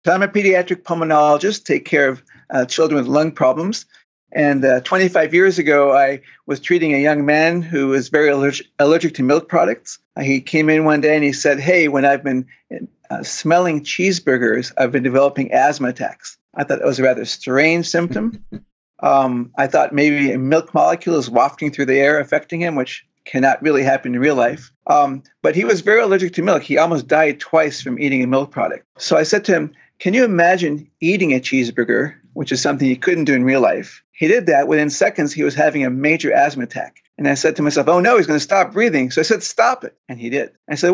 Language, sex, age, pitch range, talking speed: English, male, 50-69, 135-165 Hz, 225 wpm